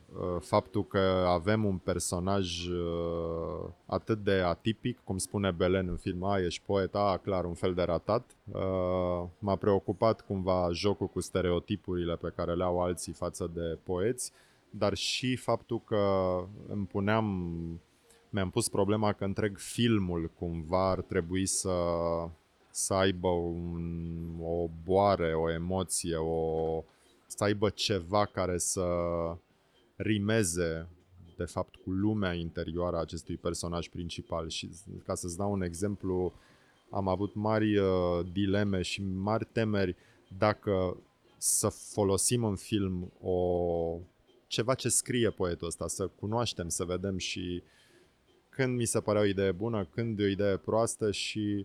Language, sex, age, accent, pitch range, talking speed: Romanian, male, 20-39, native, 85-105 Hz, 135 wpm